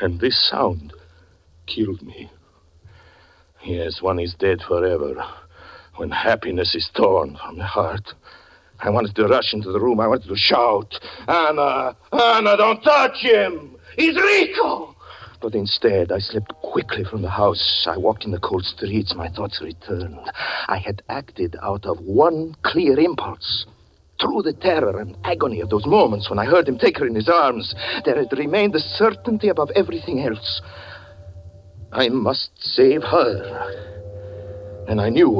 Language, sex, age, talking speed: English, male, 60-79, 155 wpm